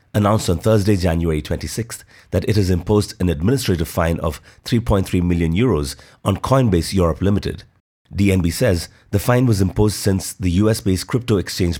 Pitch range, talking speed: 85-110 Hz, 160 wpm